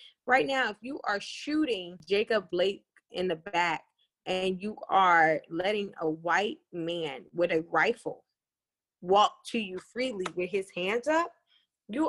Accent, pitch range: American, 190-260 Hz